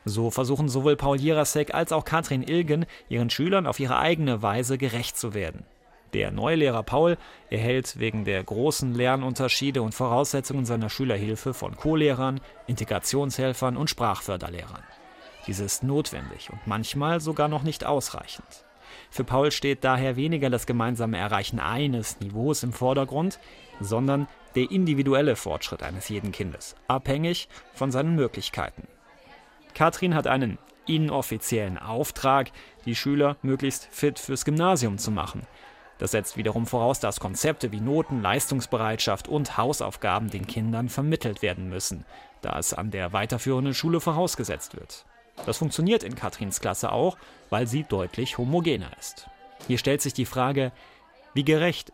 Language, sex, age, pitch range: German, male, 30-49, 115-150 Hz